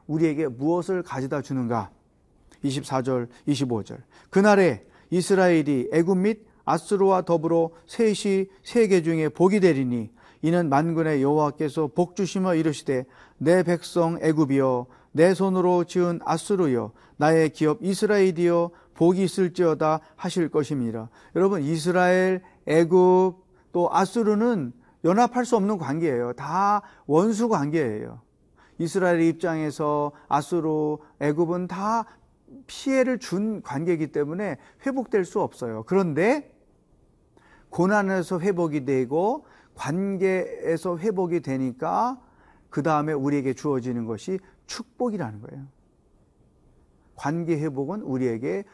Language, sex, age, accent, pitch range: Korean, male, 40-59, native, 145-185 Hz